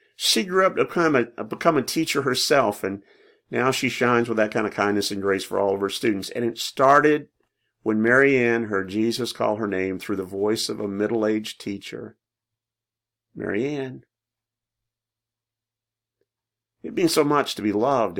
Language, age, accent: English, 40-59, American